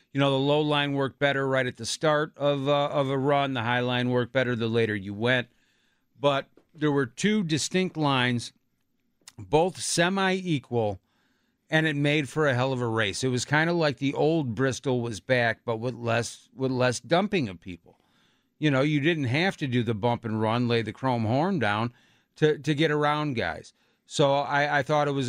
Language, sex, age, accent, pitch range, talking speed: English, male, 50-69, American, 120-150 Hz, 205 wpm